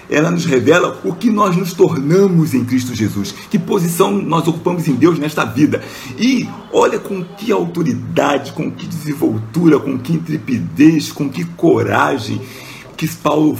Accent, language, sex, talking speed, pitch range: Brazilian, Portuguese, male, 155 wpm, 115-185 Hz